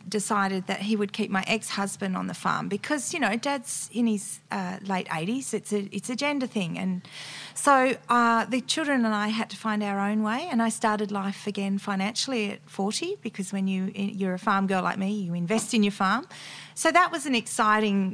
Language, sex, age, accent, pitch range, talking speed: English, female, 40-59, Australian, 195-230 Hz, 215 wpm